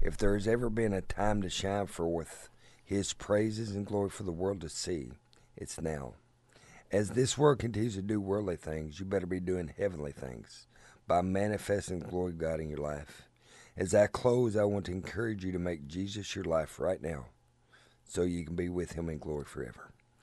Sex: male